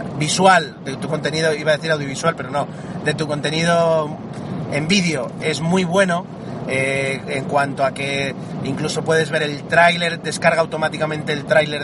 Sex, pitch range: male, 150-185 Hz